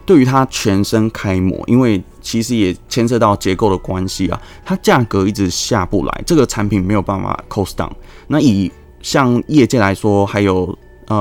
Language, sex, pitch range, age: Chinese, male, 95-115 Hz, 20-39